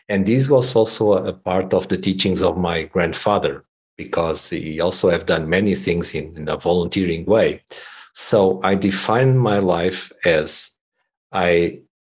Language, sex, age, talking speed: English, male, 50-69, 155 wpm